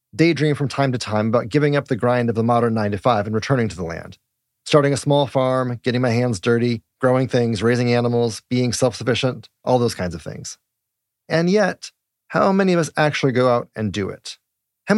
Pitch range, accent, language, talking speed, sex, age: 120-165 Hz, American, English, 205 wpm, male, 30-49